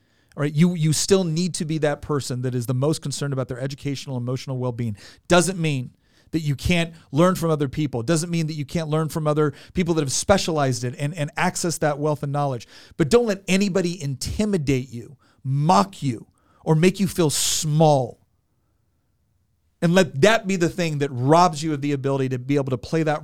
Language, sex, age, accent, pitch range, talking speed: English, male, 40-59, American, 120-165 Hz, 205 wpm